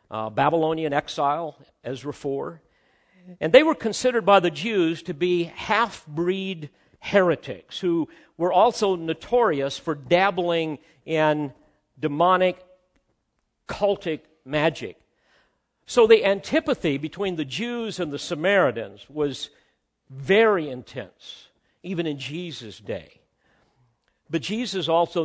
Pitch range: 135-180 Hz